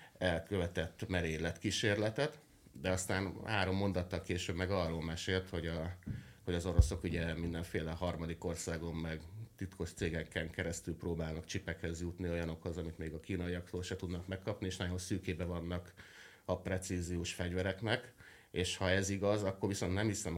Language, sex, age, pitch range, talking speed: Hungarian, male, 30-49, 85-95 Hz, 145 wpm